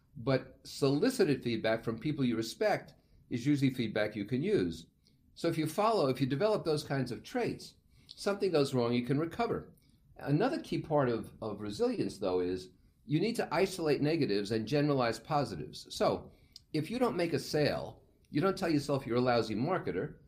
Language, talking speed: English, 180 wpm